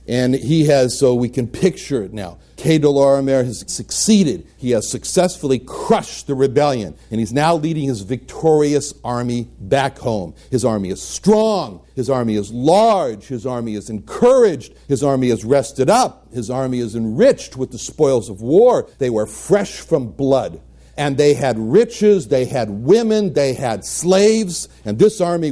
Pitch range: 120-175 Hz